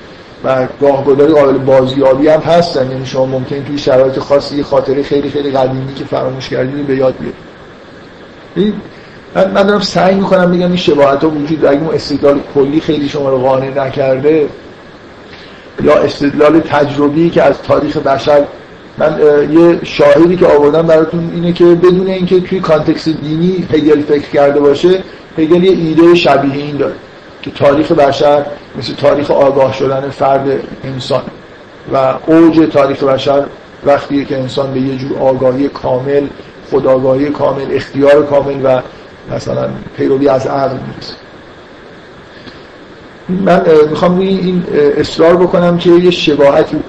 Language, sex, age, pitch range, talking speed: Persian, male, 50-69, 135-170 Hz, 140 wpm